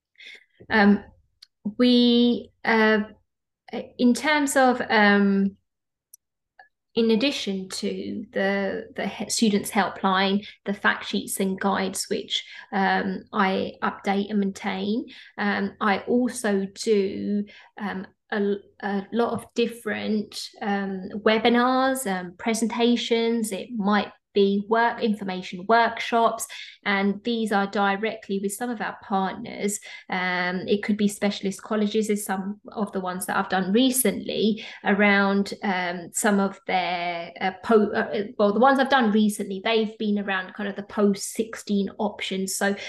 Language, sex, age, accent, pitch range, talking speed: English, female, 20-39, British, 195-225 Hz, 130 wpm